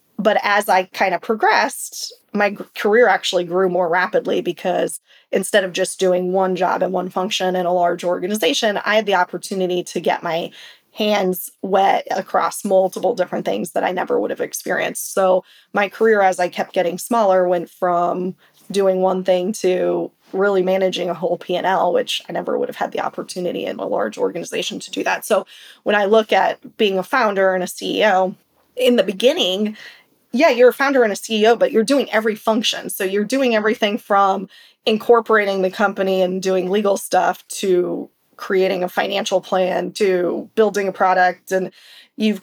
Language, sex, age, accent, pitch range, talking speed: English, female, 20-39, American, 185-215 Hz, 180 wpm